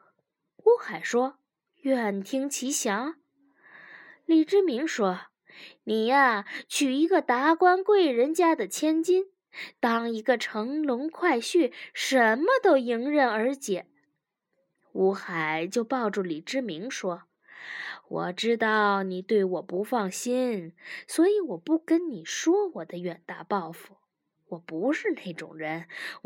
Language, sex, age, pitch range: Chinese, female, 20-39, 200-310 Hz